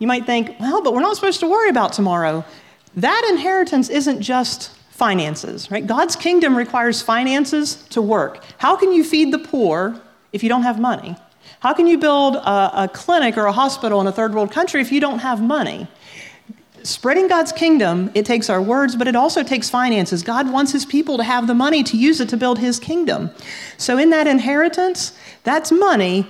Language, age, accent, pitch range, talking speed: English, 40-59, American, 205-280 Hz, 200 wpm